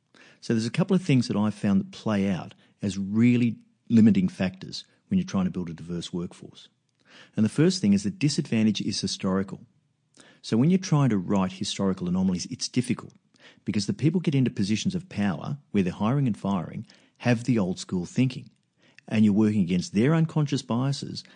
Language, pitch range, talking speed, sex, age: English, 100-150 Hz, 190 wpm, male, 50-69